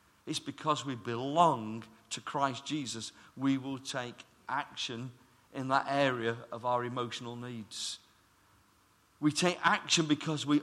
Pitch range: 120-170 Hz